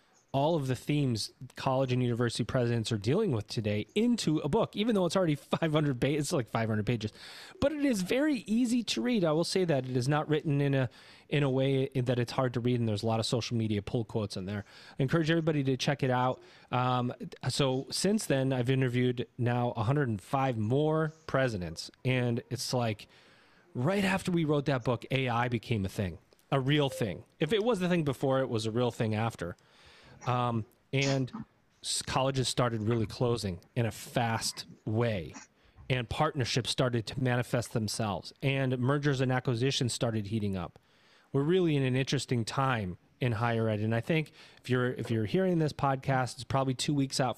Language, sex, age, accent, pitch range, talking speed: English, male, 30-49, American, 120-145 Hz, 195 wpm